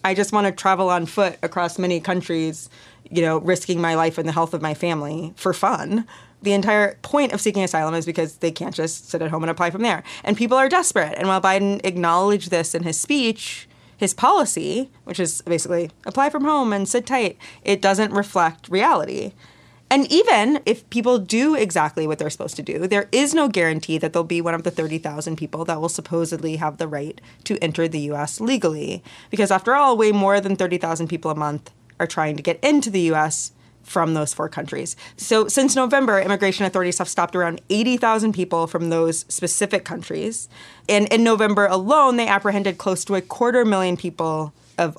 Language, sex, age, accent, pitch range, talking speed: English, female, 20-39, American, 165-215 Hz, 200 wpm